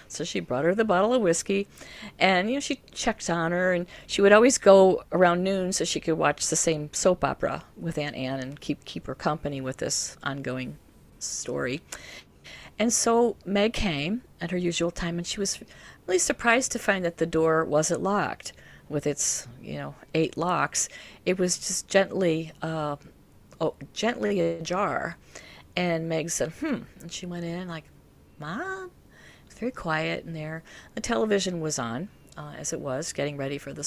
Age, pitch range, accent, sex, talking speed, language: 50-69, 155-195 Hz, American, female, 180 wpm, English